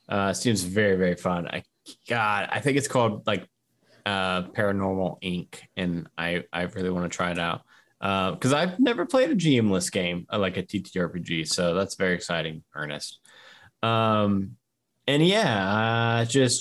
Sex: male